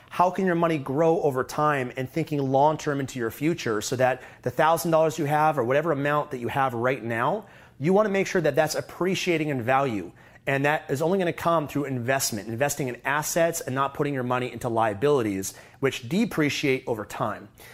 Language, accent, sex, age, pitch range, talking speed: English, American, male, 30-49, 130-165 Hz, 210 wpm